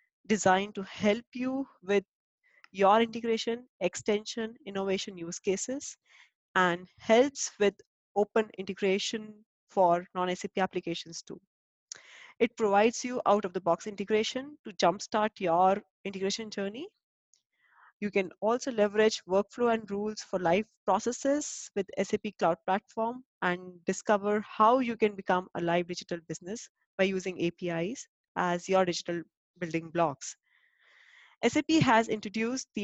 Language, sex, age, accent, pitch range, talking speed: English, female, 20-39, Indian, 185-225 Hz, 120 wpm